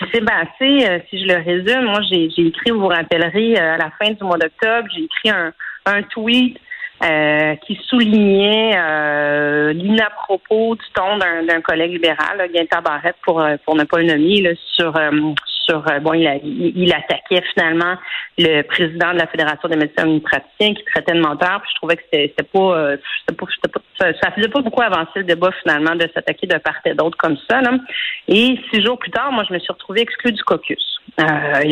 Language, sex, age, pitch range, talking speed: French, female, 40-59, 160-215 Hz, 220 wpm